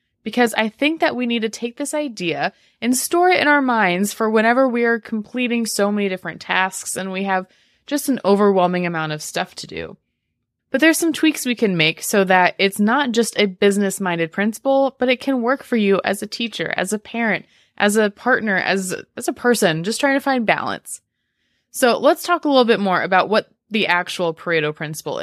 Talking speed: 205 wpm